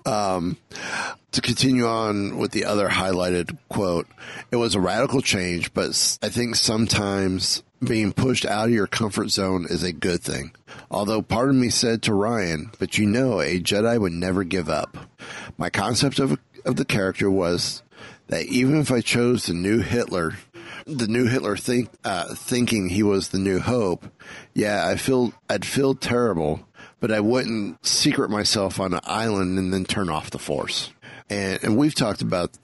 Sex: male